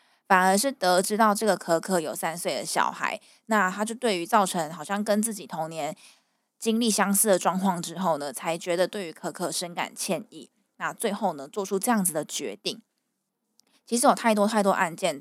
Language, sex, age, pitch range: Chinese, female, 20-39, 175-225 Hz